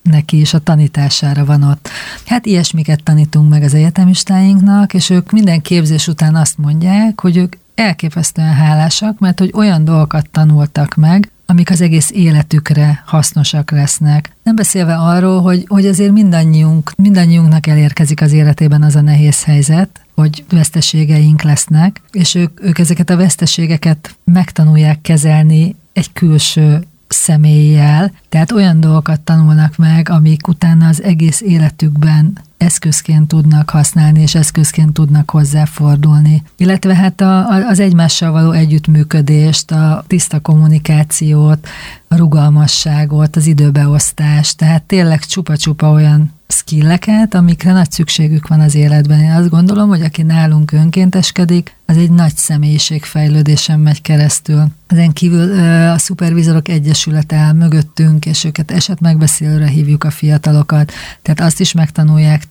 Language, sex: Hungarian, female